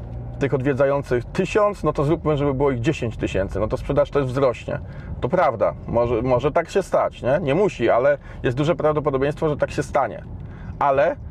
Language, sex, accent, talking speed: Polish, male, native, 185 wpm